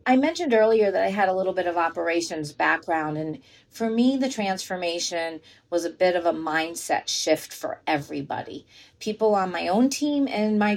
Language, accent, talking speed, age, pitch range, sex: English, American, 185 wpm, 40-59, 170-225 Hz, female